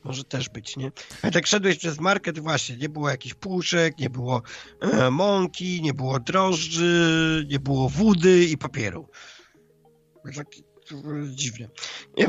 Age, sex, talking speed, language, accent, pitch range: 50-69, male, 150 wpm, Polish, native, 140-175 Hz